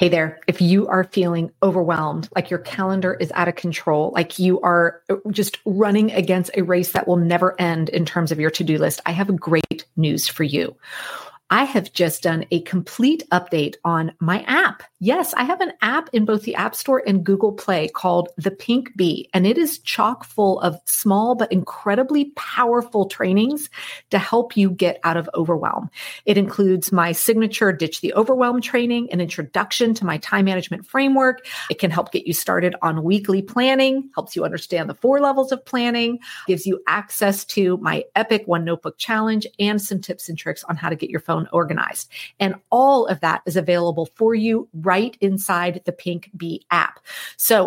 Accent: American